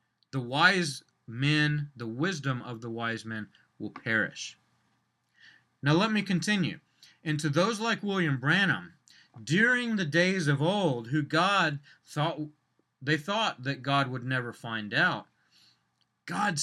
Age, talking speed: 30-49, 135 wpm